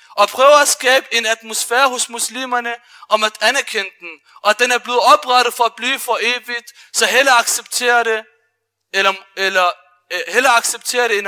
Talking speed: 180 wpm